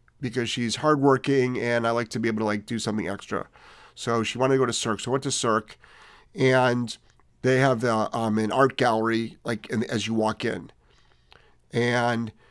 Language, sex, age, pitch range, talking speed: English, male, 40-59, 110-150 Hz, 195 wpm